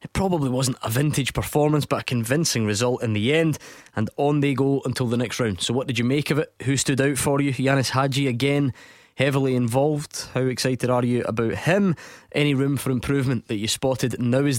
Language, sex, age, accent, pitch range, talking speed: English, male, 20-39, British, 120-140 Hz, 220 wpm